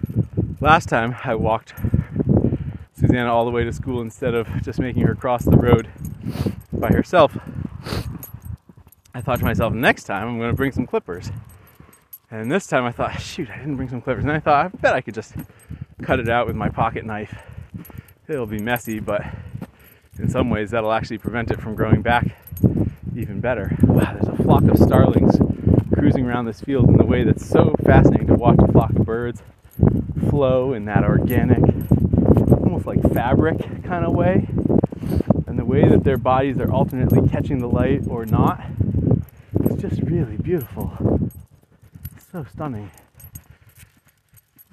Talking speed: 170 wpm